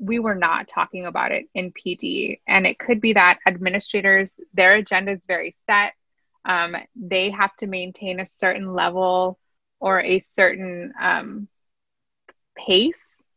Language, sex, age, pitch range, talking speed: English, female, 20-39, 185-220 Hz, 145 wpm